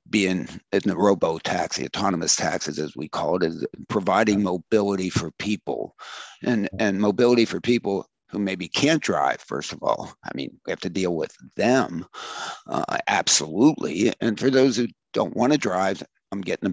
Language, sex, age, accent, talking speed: English, male, 50-69, American, 175 wpm